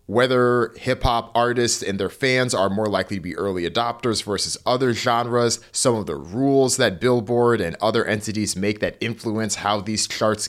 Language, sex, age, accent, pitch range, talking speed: English, male, 30-49, American, 95-120 Hz, 175 wpm